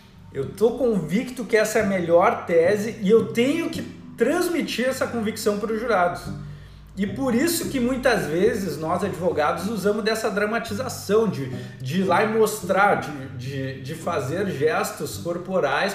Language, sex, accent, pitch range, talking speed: Portuguese, male, Brazilian, 175-240 Hz, 155 wpm